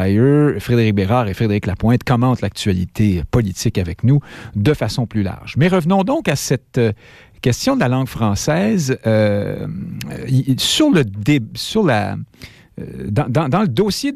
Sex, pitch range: male, 115-165 Hz